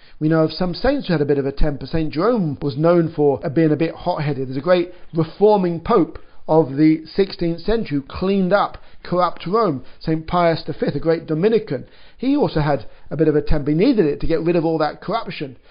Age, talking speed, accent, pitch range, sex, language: 50-69, 225 wpm, British, 155-190 Hz, male, English